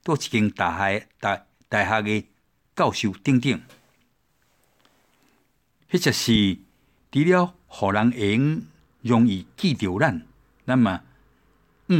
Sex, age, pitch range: male, 60-79, 85-125 Hz